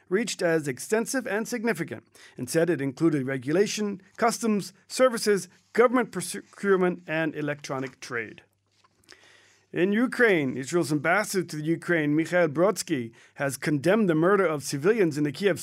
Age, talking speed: 40-59, 135 wpm